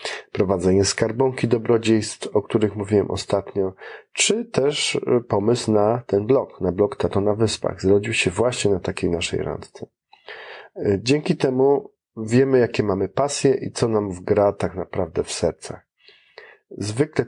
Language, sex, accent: Polish, male, native